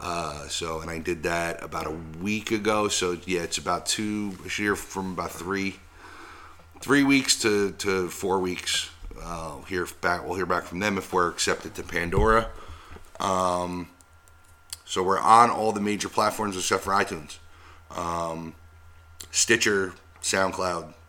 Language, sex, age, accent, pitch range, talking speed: English, male, 30-49, American, 80-100 Hz, 155 wpm